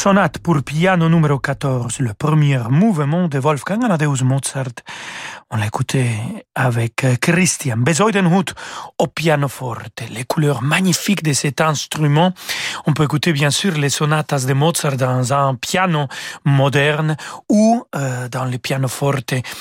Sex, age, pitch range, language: male, 40-59, 135-170 Hz, French